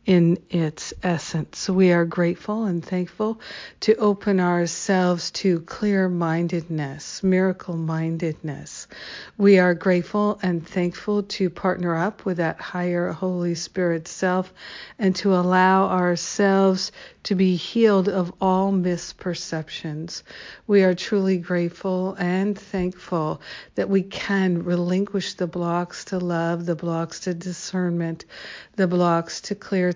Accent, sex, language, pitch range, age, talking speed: American, female, English, 170-190 Hz, 60-79, 125 wpm